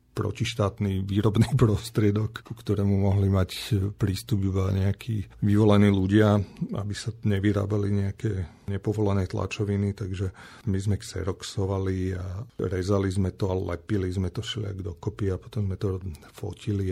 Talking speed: 130 wpm